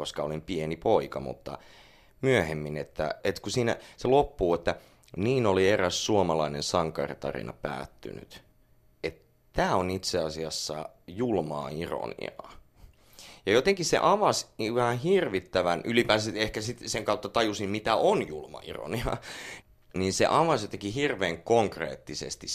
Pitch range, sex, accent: 80-115 Hz, male, native